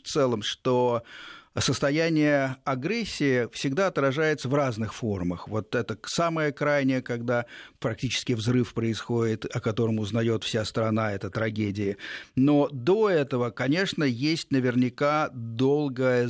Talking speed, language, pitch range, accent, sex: 120 wpm, Russian, 115-140 Hz, native, male